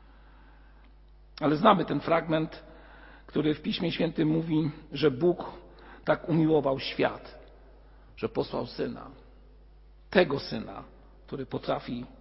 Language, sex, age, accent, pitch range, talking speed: Polish, male, 50-69, native, 140-185 Hz, 105 wpm